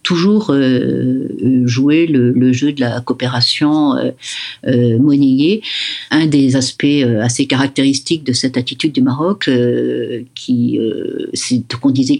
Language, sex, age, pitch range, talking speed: French, female, 50-69, 125-150 Hz, 145 wpm